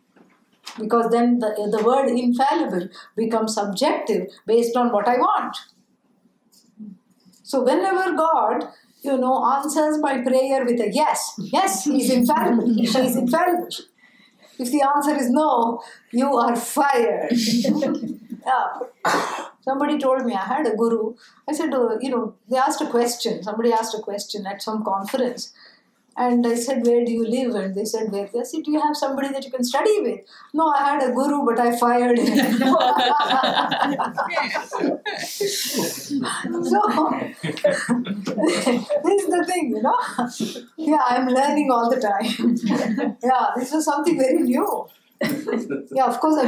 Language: English